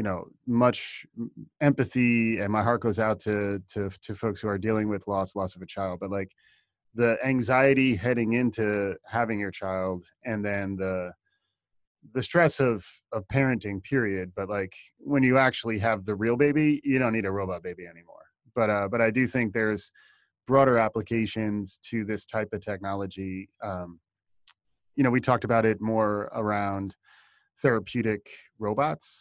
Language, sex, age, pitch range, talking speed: English, male, 20-39, 100-125 Hz, 165 wpm